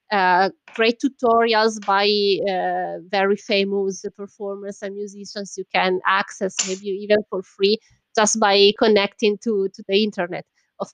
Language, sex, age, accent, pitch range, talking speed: English, female, 20-39, Italian, 190-235 Hz, 135 wpm